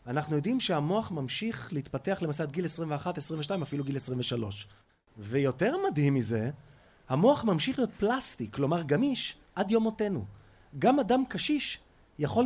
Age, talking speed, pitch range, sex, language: 30-49, 130 wpm, 135-200 Hz, male, Hebrew